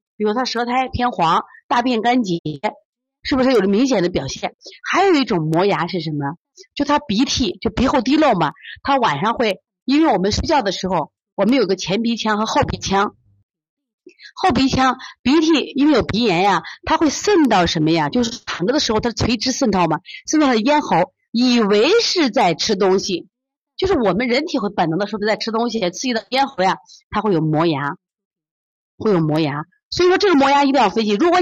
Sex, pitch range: female, 190-290 Hz